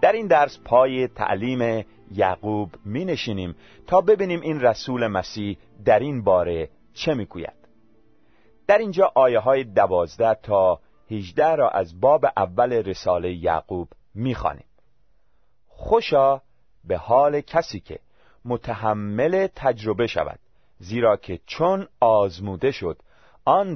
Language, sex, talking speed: Persian, male, 115 wpm